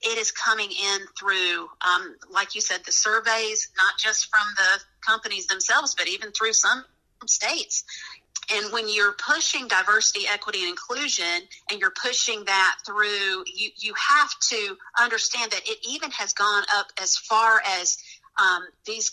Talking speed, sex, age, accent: 160 wpm, female, 40-59, American